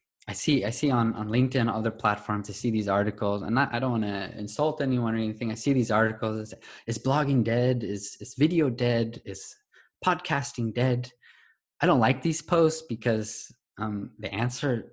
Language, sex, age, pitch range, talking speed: English, male, 20-39, 105-125 Hz, 175 wpm